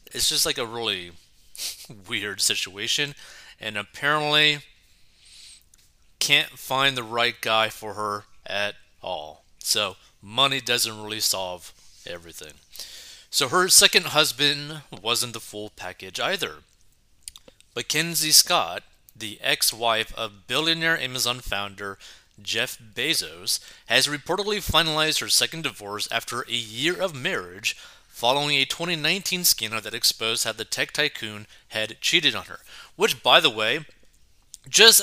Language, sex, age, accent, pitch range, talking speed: English, male, 30-49, American, 110-155 Hz, 125 wpm